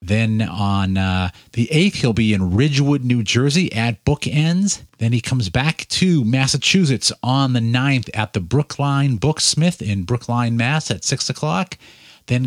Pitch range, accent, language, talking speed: 110-150 Hz, American, English, 160 wpm